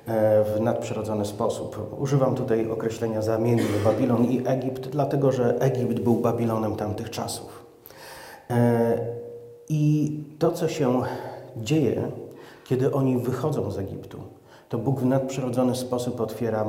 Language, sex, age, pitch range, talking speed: Polish, male, 30-49, 105-130 Hz, 120 wpm